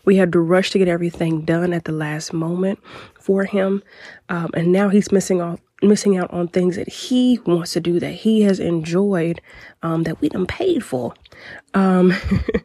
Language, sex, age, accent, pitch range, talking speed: English, female, 20-39, American, 165-195 Hz, 190 wpm